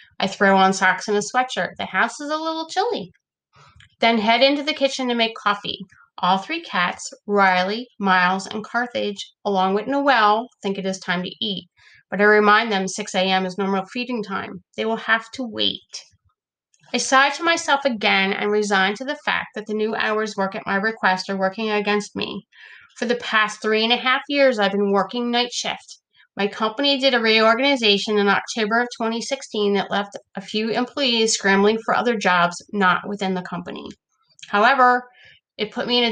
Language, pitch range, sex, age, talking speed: English, 195-245 Hz, female, 30-49, 190 wpm